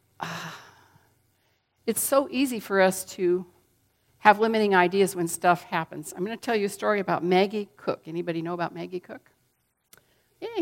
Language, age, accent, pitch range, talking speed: English, 50-69, American, 165-210 Hz, 160 wpm